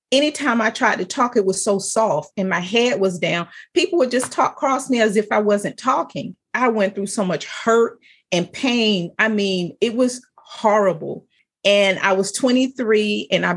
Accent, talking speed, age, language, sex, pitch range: American, 195 wpm, 40-59, English, female, 190-235 Hz